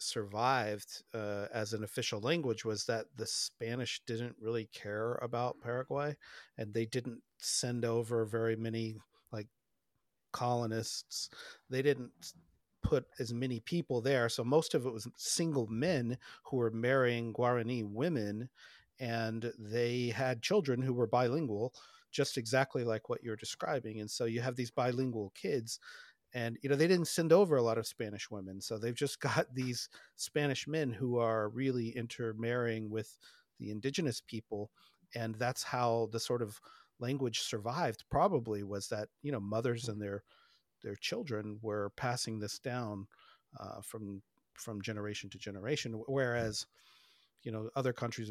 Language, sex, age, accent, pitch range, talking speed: English, male, 40-59, American, 110-125 Hz, 155 wpm